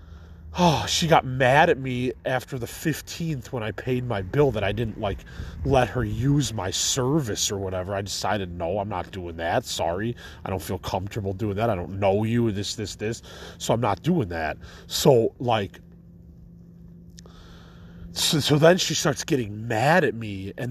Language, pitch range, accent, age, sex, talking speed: English, 90-130 Hz, American, 30-49, male, 185 wpm